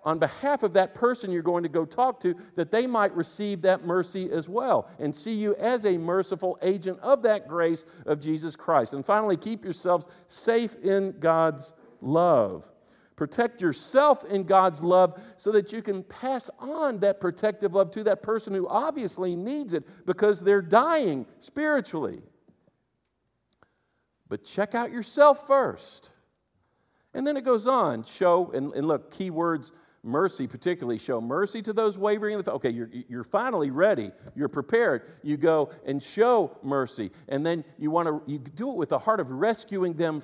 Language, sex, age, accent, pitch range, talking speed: English, male, 50-69, American, 160-225 Hz, 170 wpm